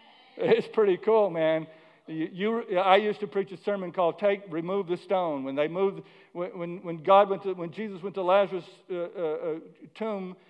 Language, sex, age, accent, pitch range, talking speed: English, male, 60-79, American, 160-200 Hz, 190 wpm